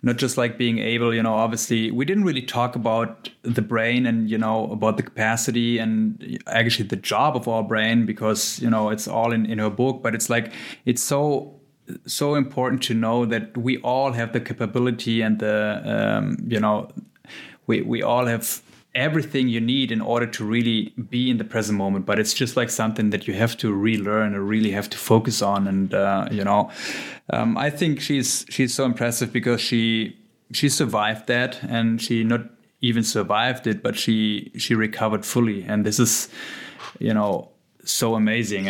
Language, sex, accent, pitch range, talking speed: German, male, German, 110-120 Hz, 190 wpm